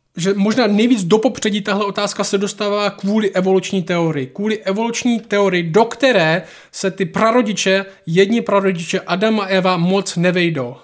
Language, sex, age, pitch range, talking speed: Czech, male, 20-39, 175-205 Hz, 145 wpm